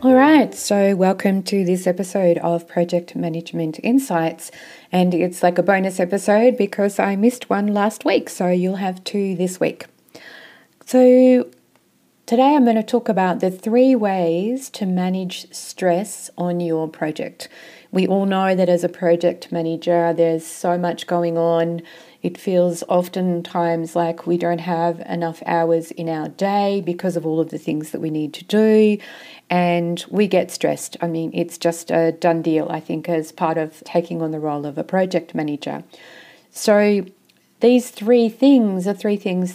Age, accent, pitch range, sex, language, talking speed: 40-59, Australian, 170-195 Hz, female, English, 170 wpm